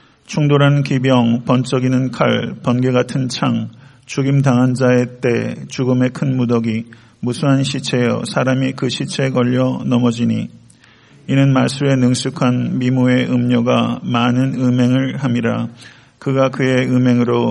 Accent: native